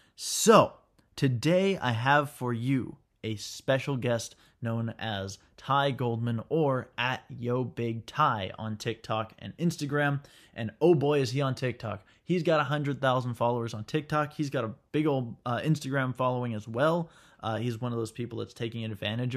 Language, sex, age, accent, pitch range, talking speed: English, male, 20-39, American, 115-145 Hz, 160 wpm